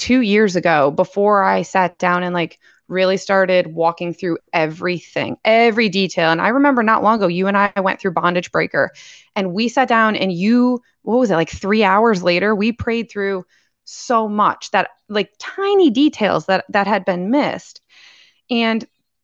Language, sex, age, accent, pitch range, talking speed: English, female, 20-39, American, 185-245 Hz, 180 wpm